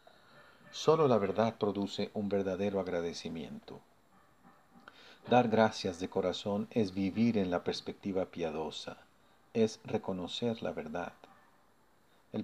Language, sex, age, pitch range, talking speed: Spanish, male, 50-69, 95-115 Hz, 105 wpm